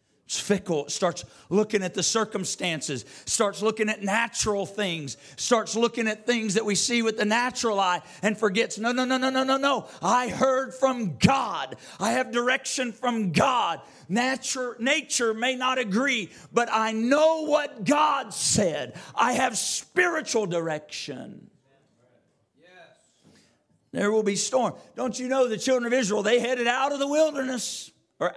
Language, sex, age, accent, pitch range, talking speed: English, male, 50-69, American, 195-260 Hz, 160 wpm